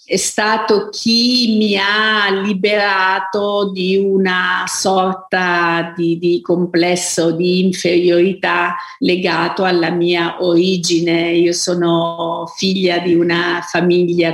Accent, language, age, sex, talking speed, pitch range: native, Italian, 50-69, female, 100 wpm, 170-190 Hz